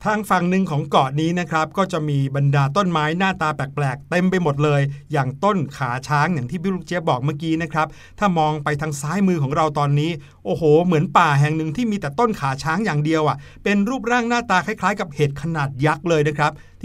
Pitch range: 145-185 Hz